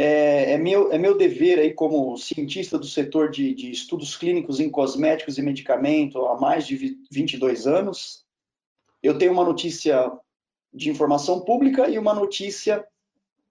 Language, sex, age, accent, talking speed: Portuguese, male, 20-39, Brazilian, 145 wpm